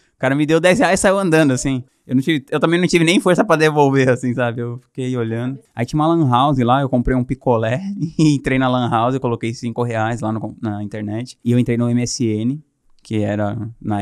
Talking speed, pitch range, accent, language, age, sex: 230 wpm, 115-140 Hz, Brazilian, Portuguese, 20-39, male